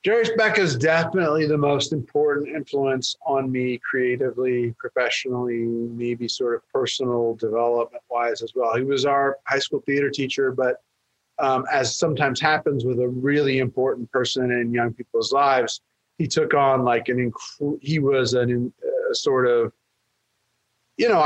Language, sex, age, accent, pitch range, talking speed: English, male, 30-49, American, 125-160 Hz, 150 wpm